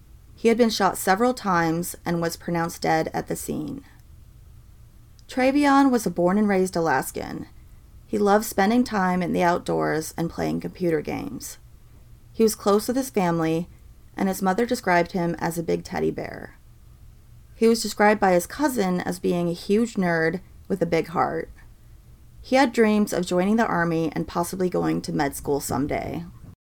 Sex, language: female, English